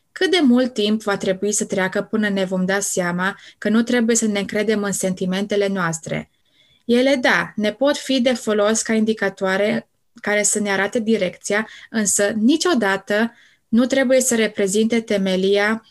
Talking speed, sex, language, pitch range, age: 160 wpm, female, Romanian, 205-255 Hz, 20-39